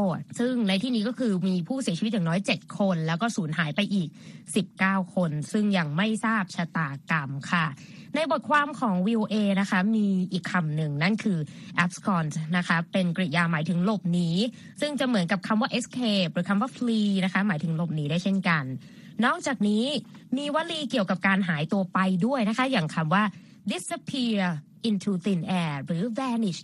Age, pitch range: 20-39, 180-225 Hz